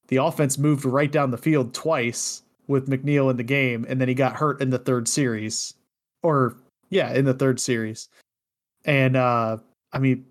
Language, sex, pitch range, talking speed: English, male, 120-145 Hz, 185 wpm